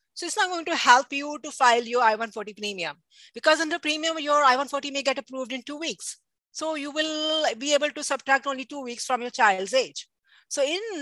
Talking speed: 220 wpm